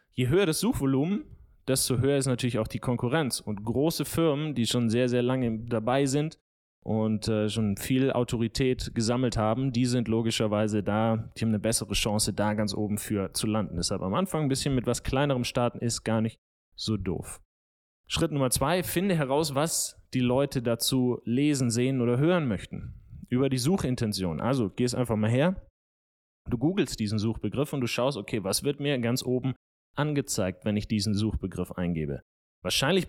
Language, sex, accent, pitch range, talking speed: German, male, German, 105-135 Hz, 180 wpm